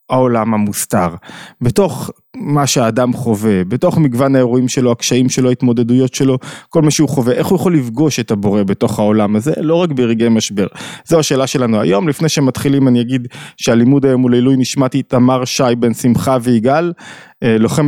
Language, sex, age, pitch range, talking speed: Hebrew, male, 20-39, 120-145 Hz, 170 wpm